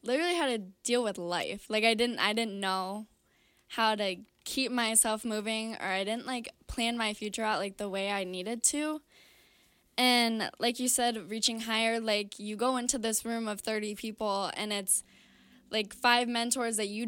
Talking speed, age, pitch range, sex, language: 185 wpm, 10-29, 205-235 Hz, female, English